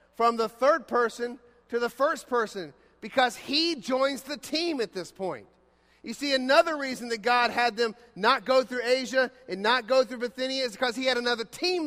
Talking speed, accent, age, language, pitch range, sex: 195 wpm, American, 40-59, English, 220-260 Hz, male